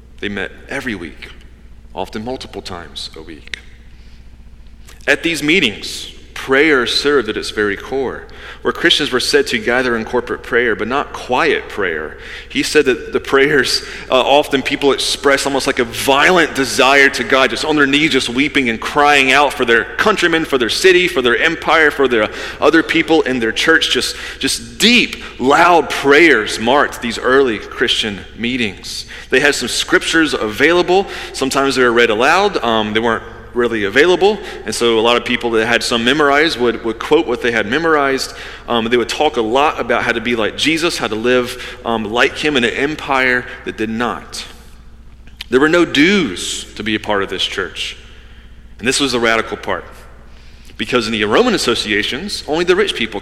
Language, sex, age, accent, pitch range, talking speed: English, male, 30-49, American, 110-140 Hz, 185 wpm